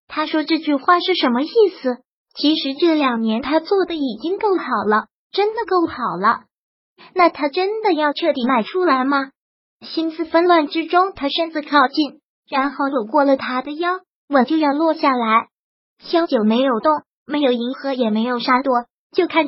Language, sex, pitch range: Chinese, male, 265-330 Hz